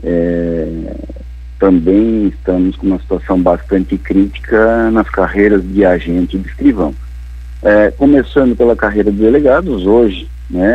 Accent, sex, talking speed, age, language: Brazilian, male, 130 wpm, 50-69, Portuguese